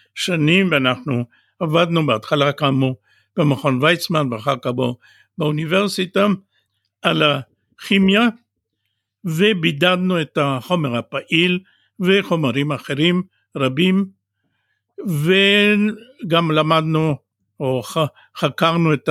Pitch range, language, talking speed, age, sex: 130-170 Hz, Hebrew, 80 wpm, 60-79, male